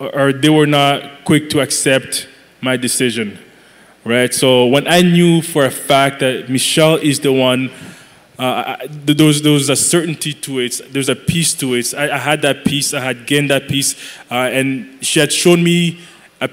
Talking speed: 195 wpm